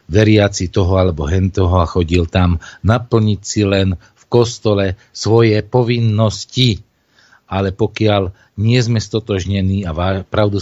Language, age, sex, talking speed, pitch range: Czech, 50-69, male, 115 wpm, 85-115 Hz